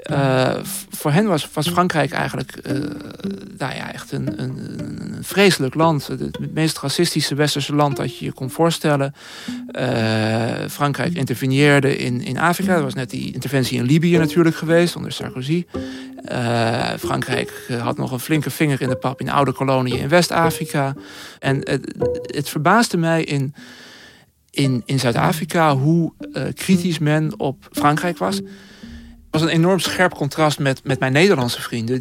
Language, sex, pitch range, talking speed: Dutch, male, 125-155 Hz, 165 wpm